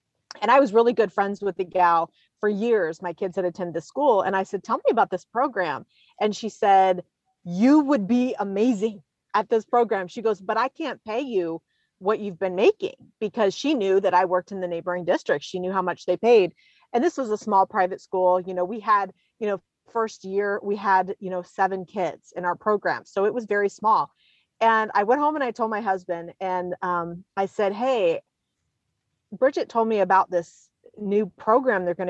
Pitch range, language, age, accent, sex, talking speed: 185-230 Hz, English, 30-49, American, female, 215 wpm